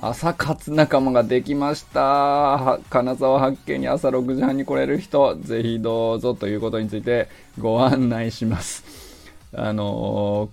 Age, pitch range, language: 20-39, 105-130 Hz, Japanese